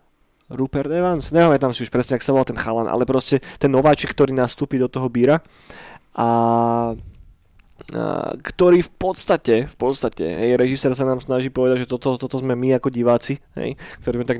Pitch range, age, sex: 120-140 Hz, 20-39, male